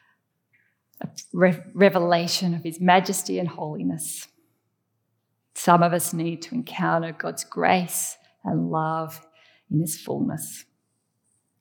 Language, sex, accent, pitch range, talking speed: English, female, Australian, 165-215 Hz, 105 wpm